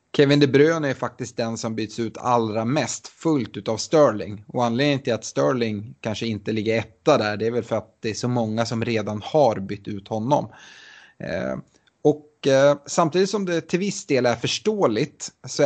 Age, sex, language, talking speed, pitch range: 30-49, male, Swedish, 195 wpm, 110-140 Hz